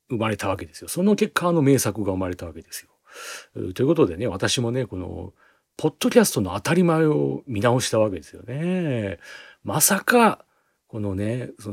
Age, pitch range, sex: 40-59, 95-155 Hz, male